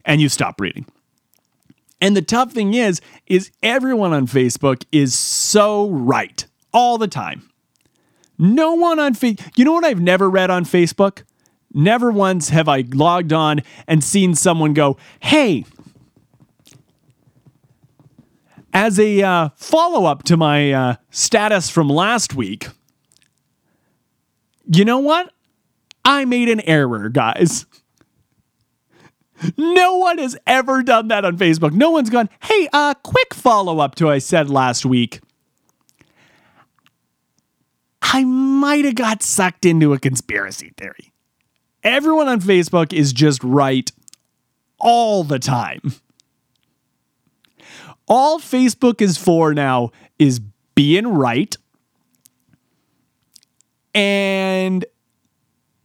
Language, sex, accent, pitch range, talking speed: English, male, American, 140-235 Hz, 120 wpm